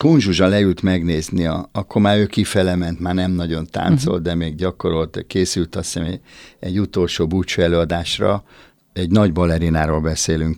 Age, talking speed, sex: 50-69, 145 wpm, male